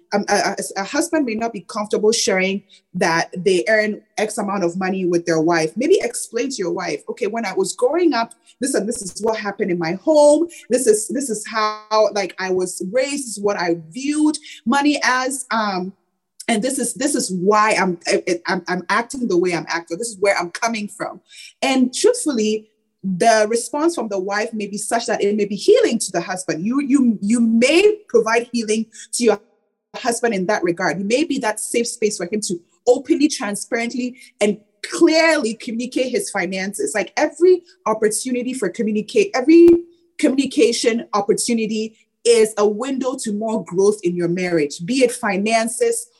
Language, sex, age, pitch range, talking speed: English, female, 20-39, 200-260 Hz, 185 wpm